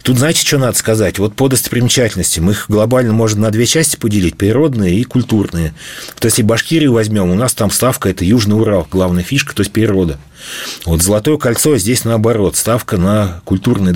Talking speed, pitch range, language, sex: 185 wpm, 95-120 Hz, Russian, male